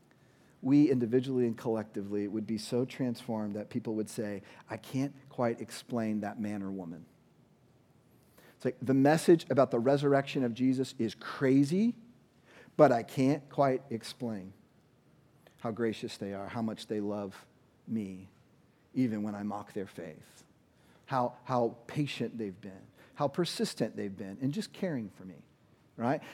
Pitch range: 110-155 Hz